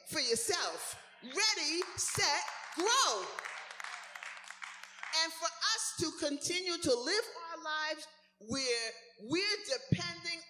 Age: 40-59